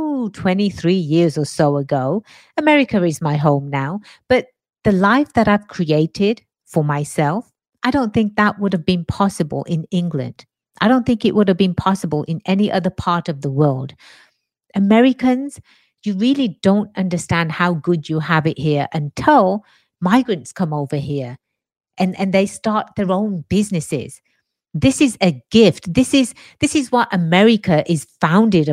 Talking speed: 160 wpm